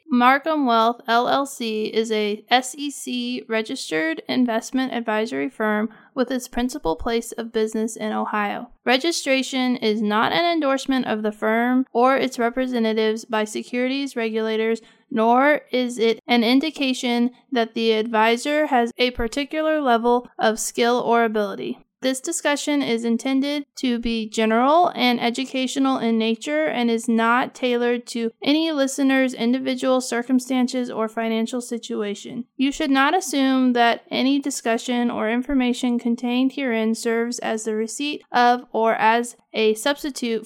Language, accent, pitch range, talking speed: English, American, 230-265 Hz, 135 wpm